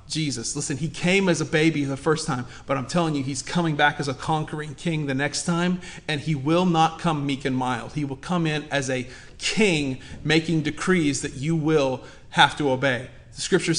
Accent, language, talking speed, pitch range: American, English, 215 wpm, 145-180 Hz